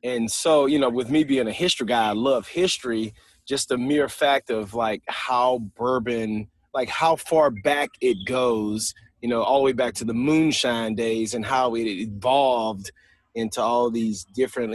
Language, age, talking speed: English, 30-49, 185 wpm